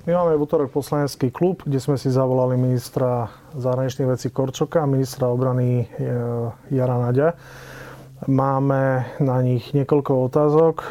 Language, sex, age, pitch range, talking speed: Slovak, male, 30-49, 130-150 Hz, 130 wpm